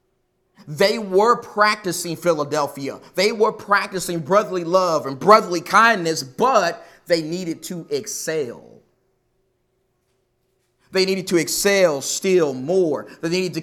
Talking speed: 115 wpm